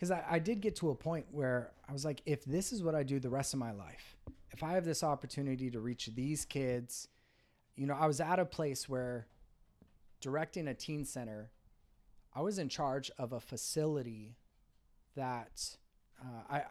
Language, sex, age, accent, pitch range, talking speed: English, male, 30-49, American, 120-150 Hz, 195 wpm